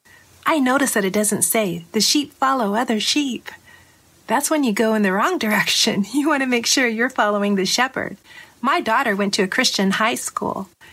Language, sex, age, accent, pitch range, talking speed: English, female, 40-59, American, 205-245 Hz, 200 wpm